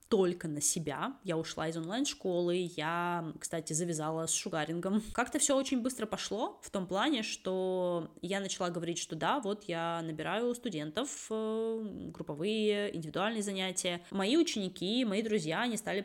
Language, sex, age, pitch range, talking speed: Russian, female, 20-39, 165-215 Hz, 150 wpm